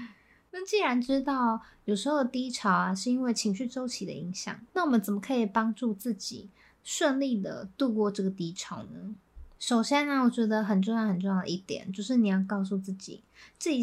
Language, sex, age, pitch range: Chinese, female, 20-39, 205-275 Hz